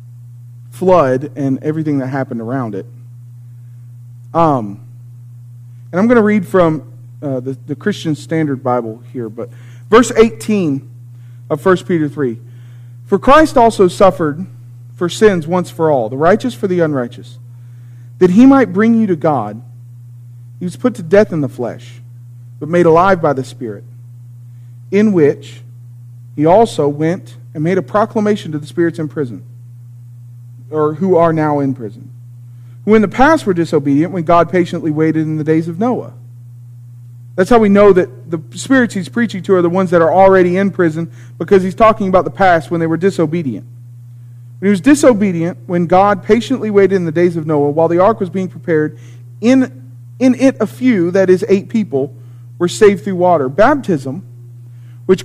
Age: 40-59